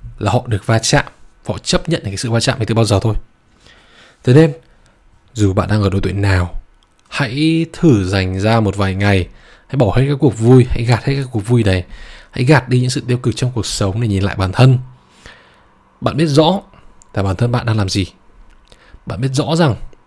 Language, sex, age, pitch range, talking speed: Vietnamese, male, 20-39, 100-130 Hz, 220 wpm